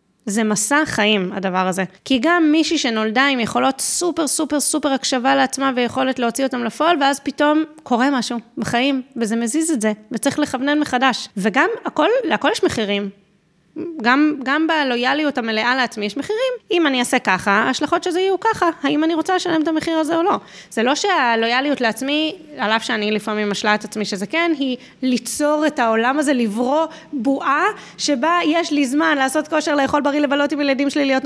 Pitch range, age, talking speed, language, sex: 225-300 Hz, 20-39, 175 wpm, Hebrew, female